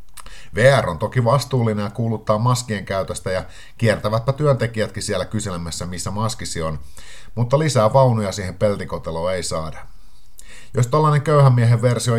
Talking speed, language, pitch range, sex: 140 wpm, Finnish, 90-115 Hz, male